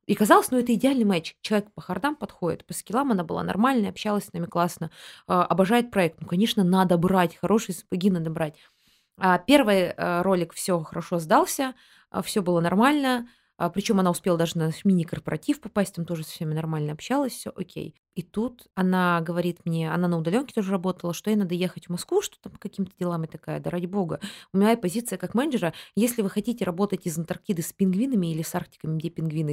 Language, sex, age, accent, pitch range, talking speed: Russian, female, 20-39, native, 165-210 Hz, 195 wpm